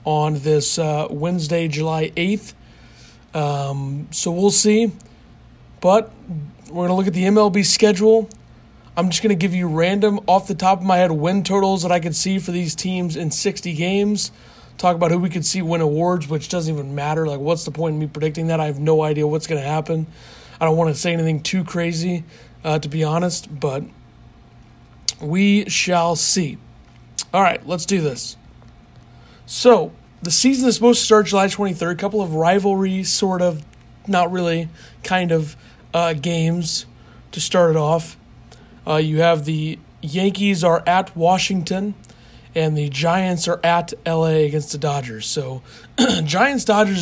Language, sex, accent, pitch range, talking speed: English, male, American, 155-185 Hz, 175 wpm